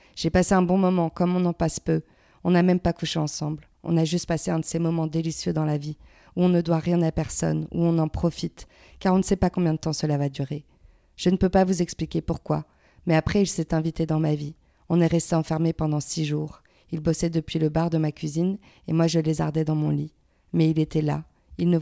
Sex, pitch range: female, 155-175 Hz